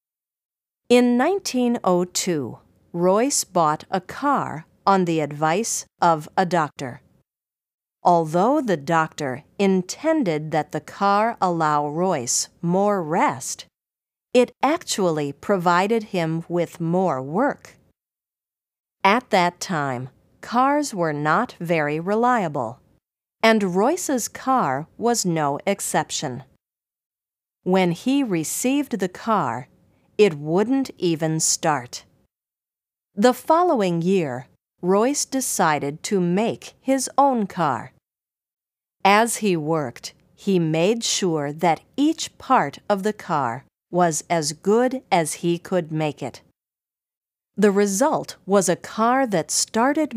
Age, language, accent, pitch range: 50-69, English, American, 155-230 Hz